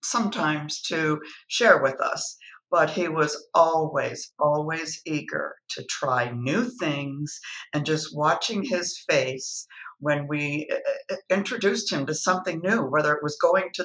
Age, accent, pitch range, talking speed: 60-79, American, 155-205 Hz, 140 wpm